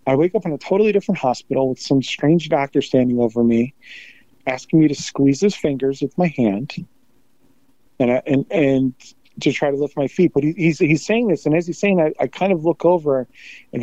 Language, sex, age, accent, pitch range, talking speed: English, male, 40-59, American, 125-160 Hz, 220 wpm